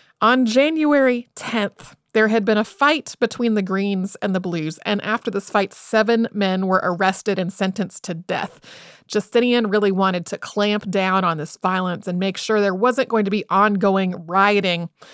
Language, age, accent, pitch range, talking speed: English, 30-49, American, 195-260 Hz, 180 wpm